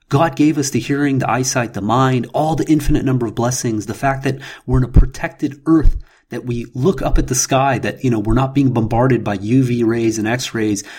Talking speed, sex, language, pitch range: 230 wpm, male, English, 110-140 Hz